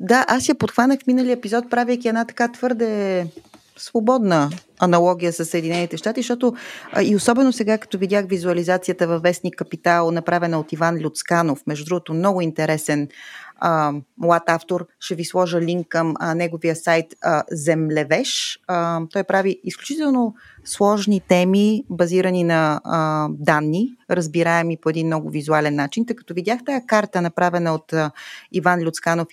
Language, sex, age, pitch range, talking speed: Bulgarian, female, 30-49, 160-210 Hz, 145 wpm